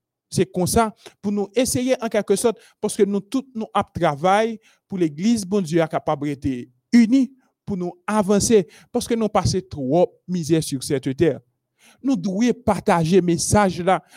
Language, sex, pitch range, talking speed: French, male, 155-220 Hz, 180 wpm